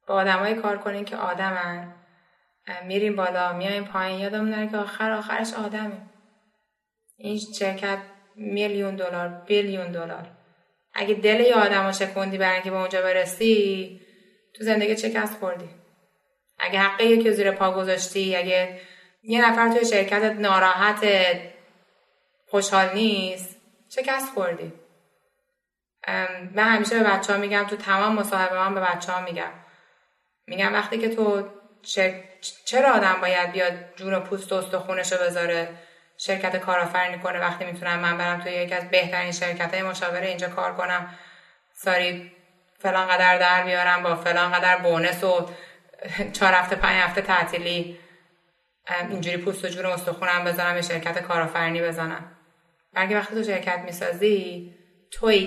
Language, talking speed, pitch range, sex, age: Persian, 135 wpm, 180-205 Hz, female, 20-39